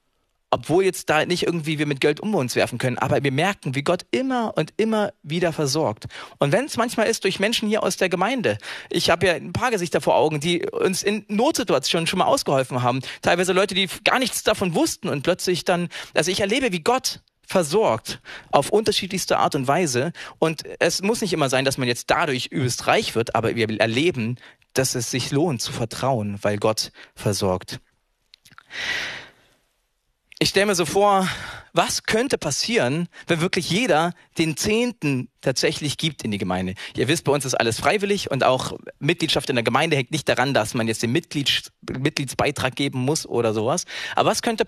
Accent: German